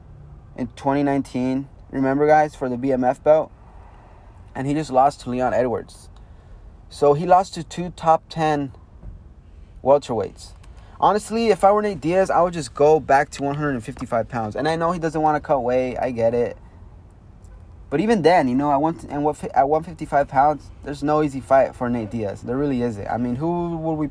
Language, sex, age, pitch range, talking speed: English, male, 20-39, 100-155 Hz, 190 wpm